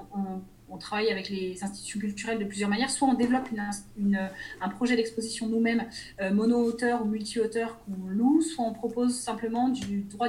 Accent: French